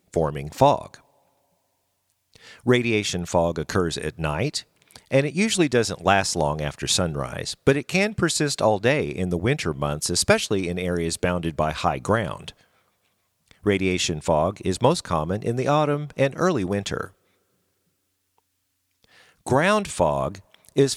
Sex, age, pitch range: male, 50-69, 90-130 Hz